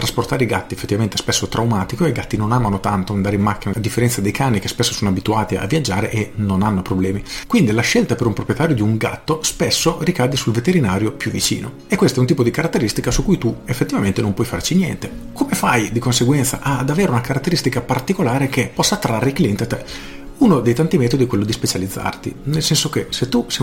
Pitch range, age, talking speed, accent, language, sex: 105-135 Hz, 40-59, 230 wpm, native, Italian, male